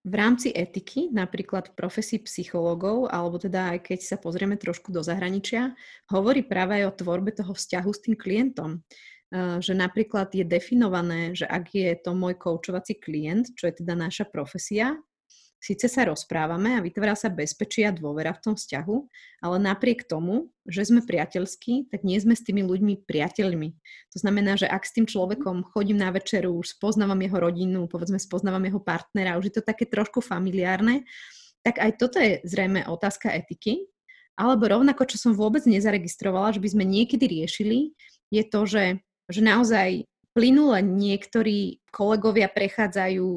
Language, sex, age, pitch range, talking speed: Slovak, female, 30-49, 185-225 Hz, 160 wpm